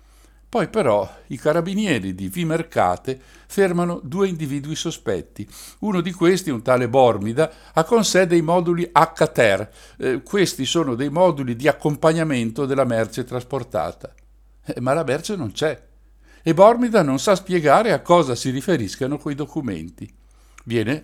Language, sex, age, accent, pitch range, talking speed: Italian, male, 60-79, native, 115-170 Hz, 145 wpm